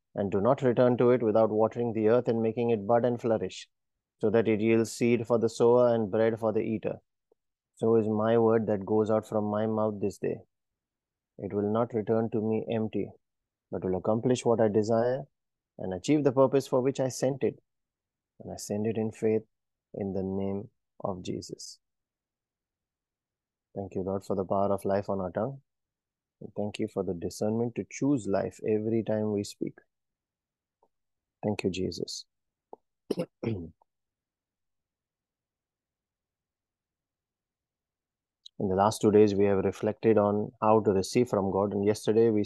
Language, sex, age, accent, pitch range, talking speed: English, male, 30-49, Indian, 100-115 Hz, 165 wpm